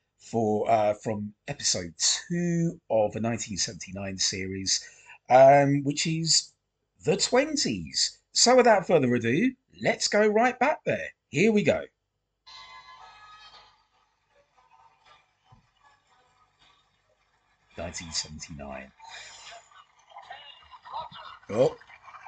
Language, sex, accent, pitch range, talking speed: English, male, British, 110-175 Hz, 75 wpm